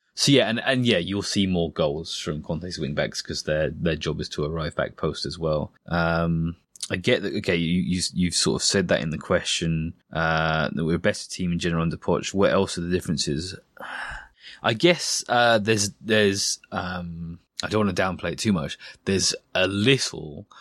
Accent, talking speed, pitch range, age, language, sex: British, 205 wpm, 85-95 Hz, 20-39, English, male